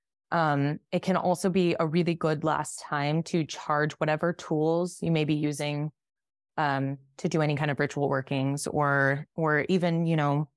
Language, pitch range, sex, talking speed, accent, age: English, 145-170 Hz, female, 175 wpm, American, 20-39